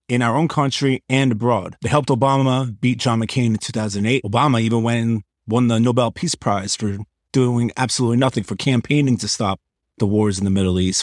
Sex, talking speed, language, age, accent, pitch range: male, 200 wpm, English, 30-49, American, 100-120 Hz